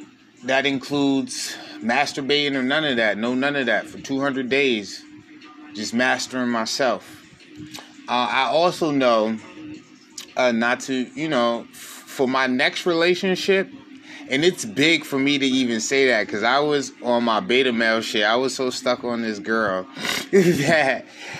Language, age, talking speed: English, 20-39, 155 wpm